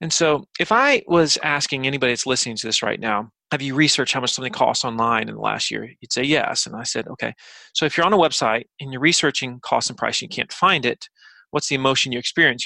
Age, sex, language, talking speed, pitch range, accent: 30-49, male, English, 250 wpm, 125-160 Hz, American